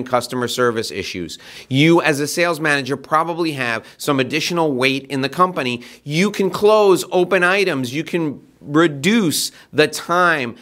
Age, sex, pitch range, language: 30-49, male, 120-155 Hz, English